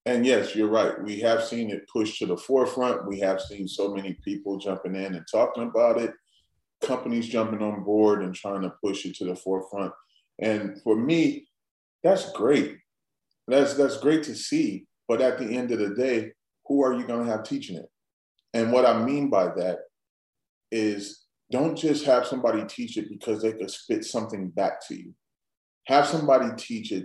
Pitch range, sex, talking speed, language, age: 105-140 Hz, male, 190 wpm, English, 30-49